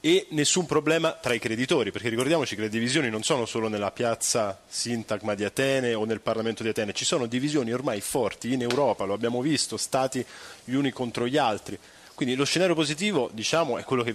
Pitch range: 110-140 Hz